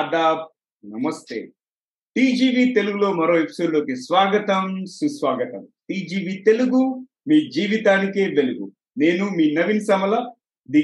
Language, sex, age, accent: Telugu, male, 30-49, native